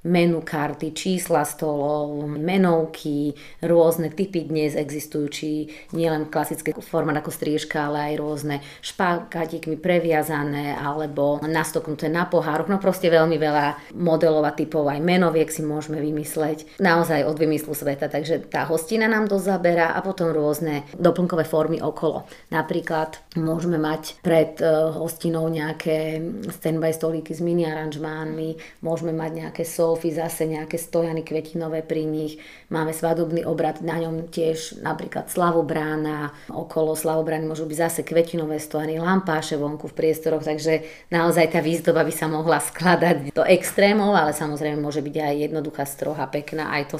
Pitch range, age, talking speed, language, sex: 155-165 Hz, 30-49, 140 wpm, Slovak, female